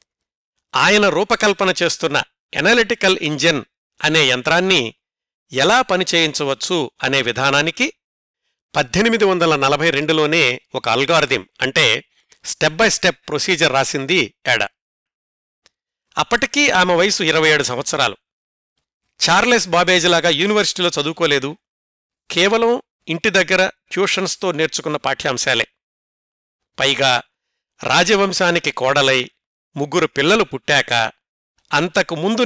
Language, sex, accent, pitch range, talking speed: Telugu, male, native, 150-190 Hz, 85 wpm